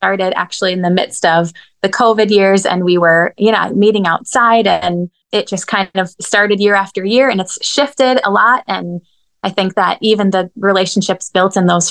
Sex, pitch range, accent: female, 180-215 Hz, American